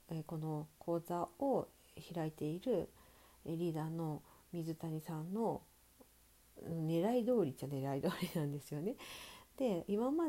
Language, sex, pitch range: Japanese, female, 160-240 Hz